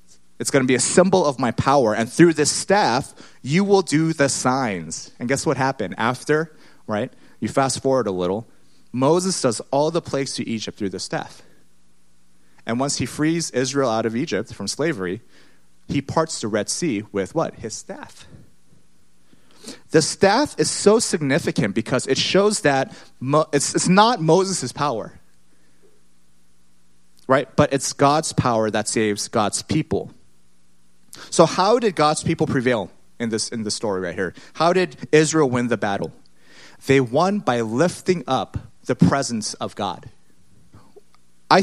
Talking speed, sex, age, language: 160 wpm, male, 30-49, English